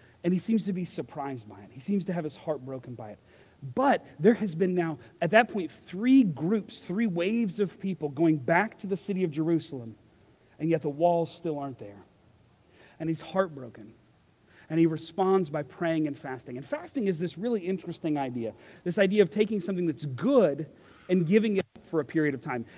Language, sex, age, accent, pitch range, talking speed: English, male, 40-59, American, 145-195 Hz, 205 wpm